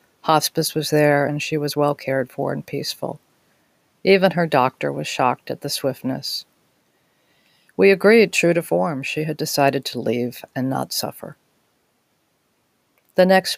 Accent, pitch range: American, 130-175 Hz